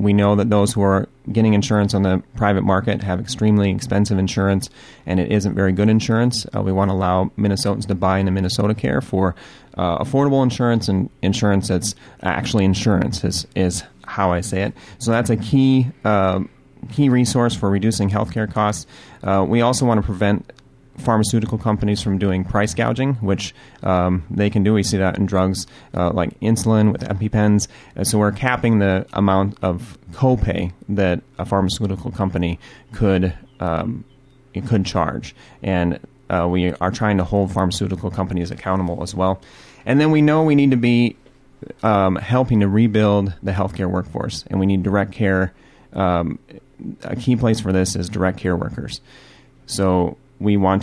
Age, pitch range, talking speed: 30-49, 95-110 Hz, 175 wpm